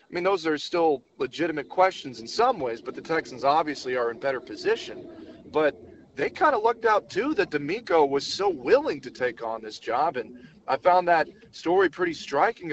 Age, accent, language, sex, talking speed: 40-59, American, English, male, 200 wpm